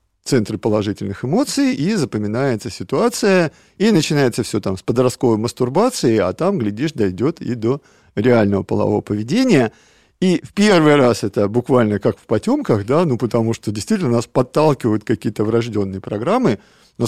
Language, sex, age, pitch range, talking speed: Russian, male, 50-69, 110-160 Hz, 150 wpm